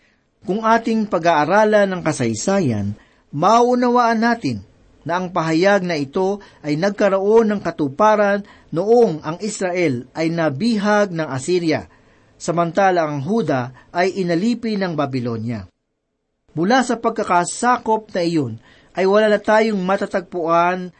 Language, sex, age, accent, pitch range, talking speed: Filipino, male, 50-69, native, 150-205 Hz, 115 wpm